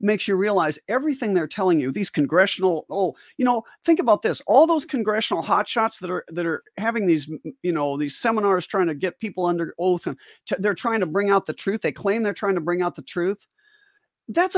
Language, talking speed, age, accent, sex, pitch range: English, 220 wpm, 50-69, American, male, 155-210 Hz